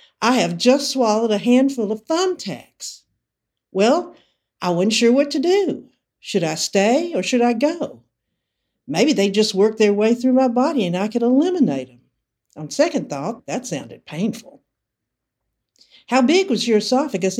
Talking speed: 160 wpm